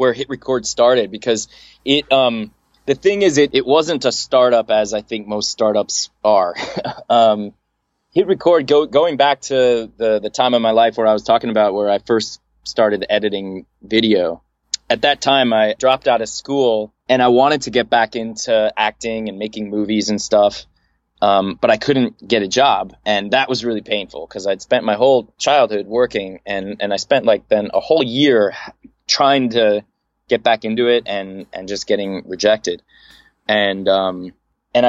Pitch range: 100-125 Hz